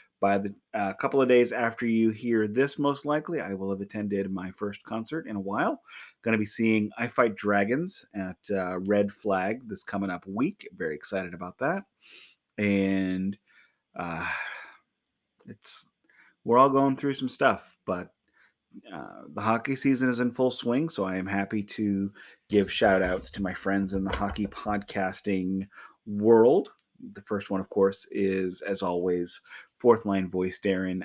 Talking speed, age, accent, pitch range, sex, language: 165 wpm, 30-49, American, 95-115 Hz, male, English